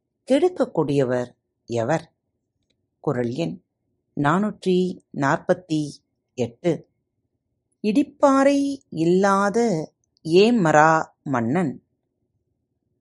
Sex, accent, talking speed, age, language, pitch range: female, native, 50 wpm, 30-49, Tamil, 135-210 Hz